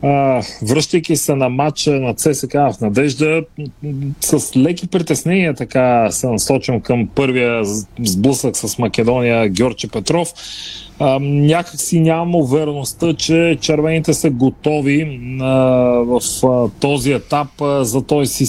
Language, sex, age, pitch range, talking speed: Bulgarian, male, 40-59, 130-160 Hz, 115 wpm